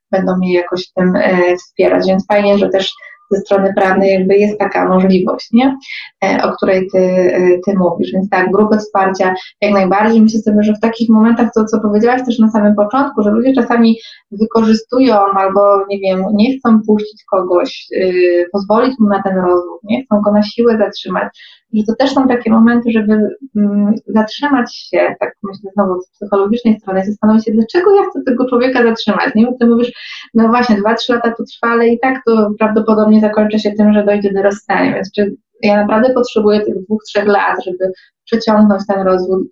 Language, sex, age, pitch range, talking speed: Polish, female, 20-39, 195-225 Hz, 195 wpm